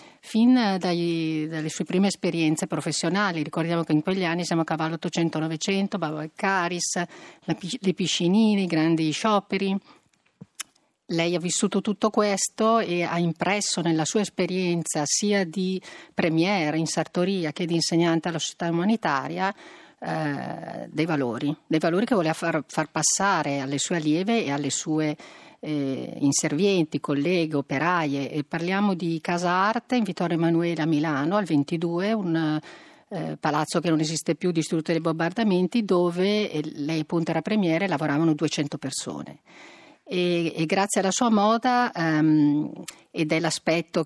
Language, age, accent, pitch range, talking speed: Italian, 40-59, native, 155-190 Hz, 145 wpm